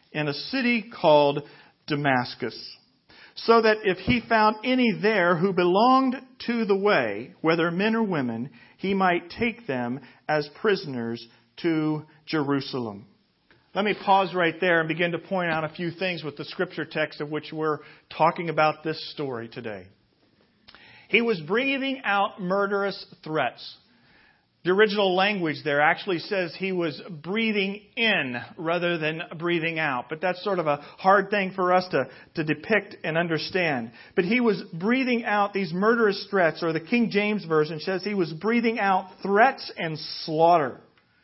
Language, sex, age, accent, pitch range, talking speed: English, male, 40-59, American, 155-215 Hz, 160 wpm